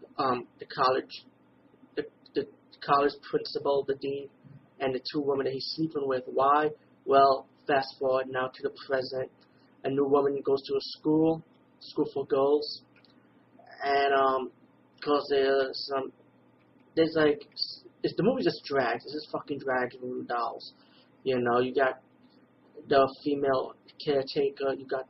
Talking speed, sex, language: 150 wpm, male, English